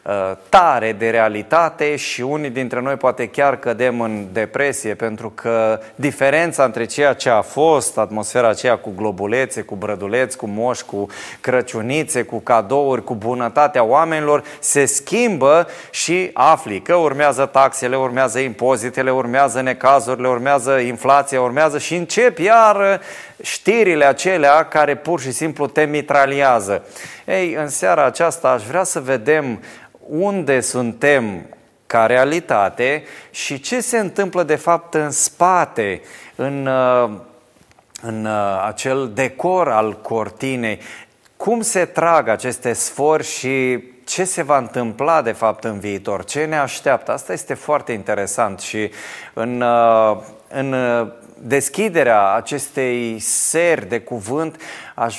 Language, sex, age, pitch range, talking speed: Romanian, male, 20-39, 115-155 Hz, 125 wpm